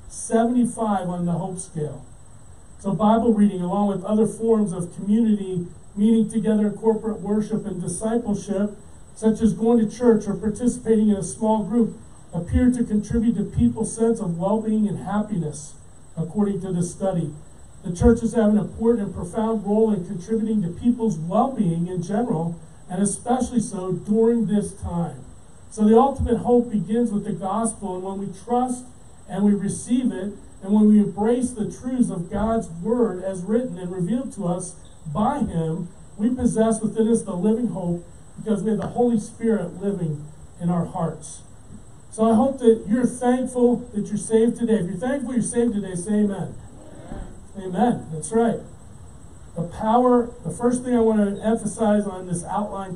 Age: 40-59